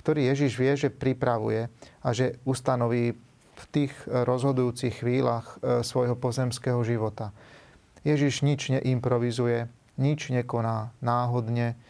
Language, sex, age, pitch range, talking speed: Slovak, male, 30-49, 120-135 Hz, 105 wpm